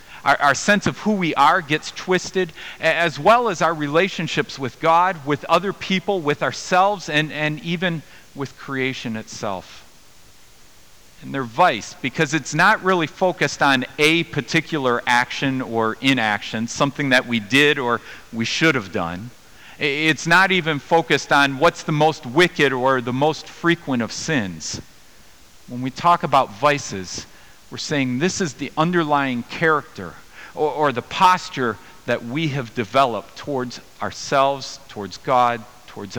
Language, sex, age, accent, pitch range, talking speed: English, male, 40-59, American, 125-165 Hz, 150 wpm